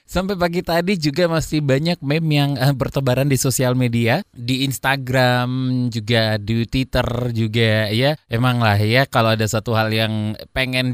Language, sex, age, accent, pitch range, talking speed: Indonesian, male, 20-39, native, 110-145 Hz, 155 wpm